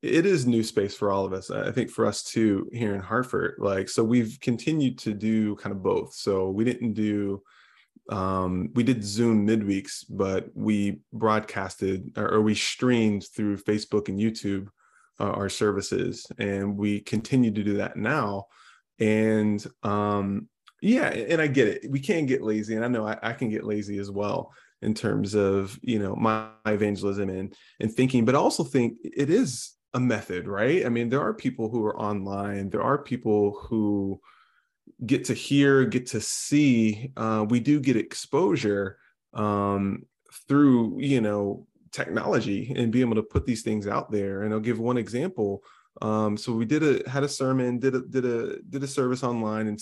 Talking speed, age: 185 wpm, 20-39